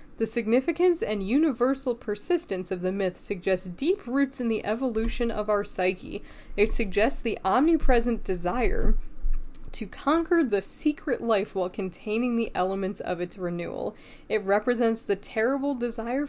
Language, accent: English, American